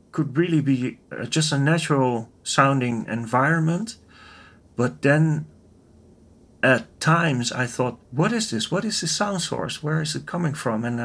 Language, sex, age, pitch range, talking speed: English, male, 40-59, 120-150 Hz, 150 wpm